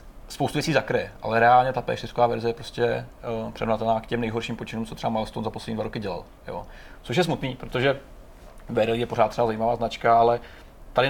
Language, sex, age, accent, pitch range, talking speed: Czech, male, 30-49, native, 110-125 Hz, 195 wpm